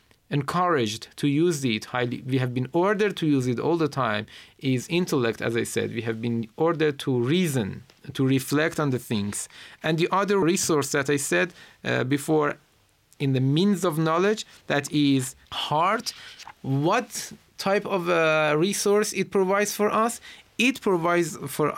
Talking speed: 165 wpm